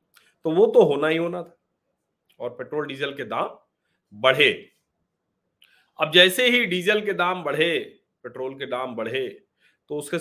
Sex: male